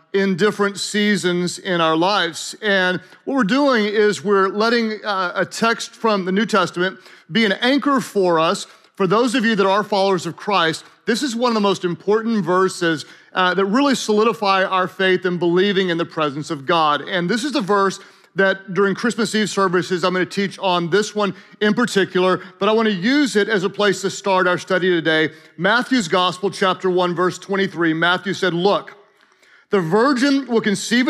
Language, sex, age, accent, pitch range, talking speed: English, male, 40-59, American, 180-220 Hz, 190 wpm